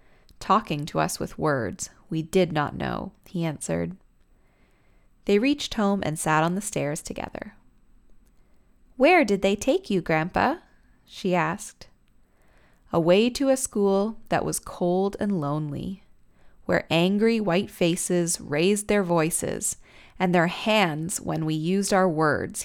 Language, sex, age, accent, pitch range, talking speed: English, female, 20-39, American, 155-195 Hz, 140 wpm